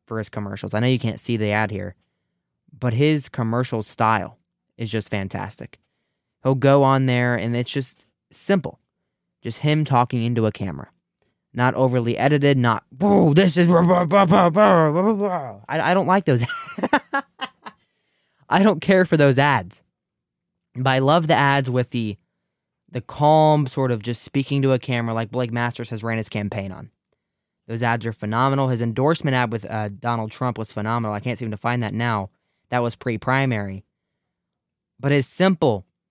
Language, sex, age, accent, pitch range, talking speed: English, male, 20-39, American, 110-140 Hz, 165 wpm